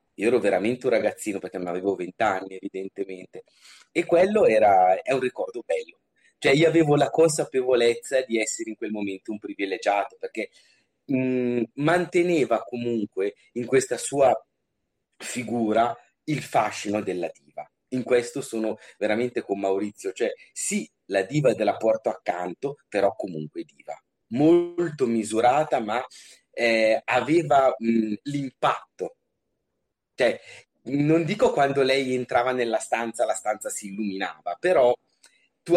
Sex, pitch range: male, 110-145 Hz